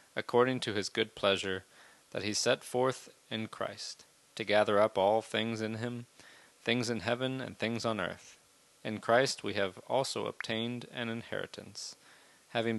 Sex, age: male, 30-49